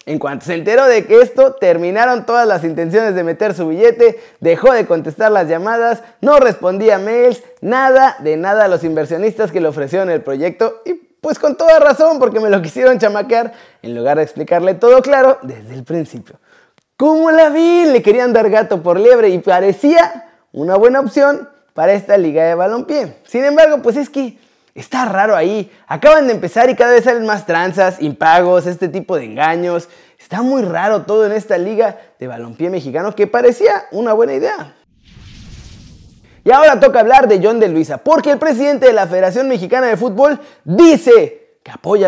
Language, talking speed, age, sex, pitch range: Spanish, 185 wpm, 20-39, male, 185-285 Hz